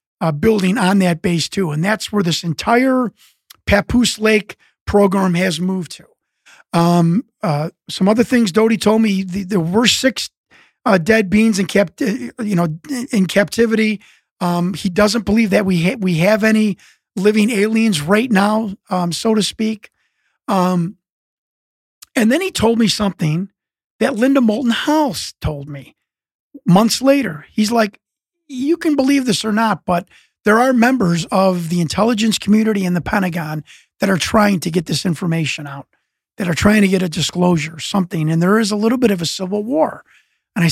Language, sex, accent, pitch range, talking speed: English, male, American, 175-225 Hz, 180 wpm